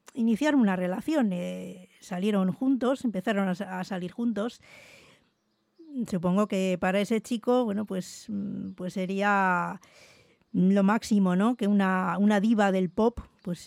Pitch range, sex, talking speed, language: 185-225 Hz, female, 130 wpm, English